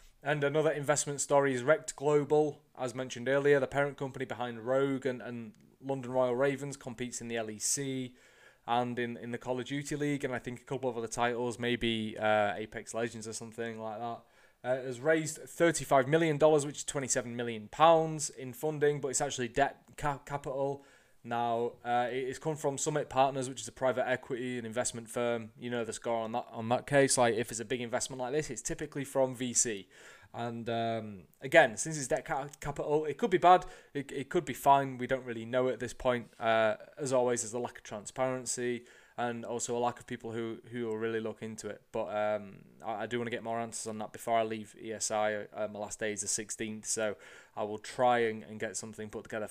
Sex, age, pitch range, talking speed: male, 20-39, 115-140 Hz, 215 wpm